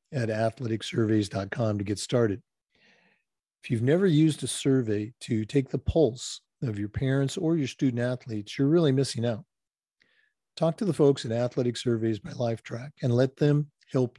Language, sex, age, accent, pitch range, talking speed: English, male, 50-69, American, 120-155 Hz, 165 wpm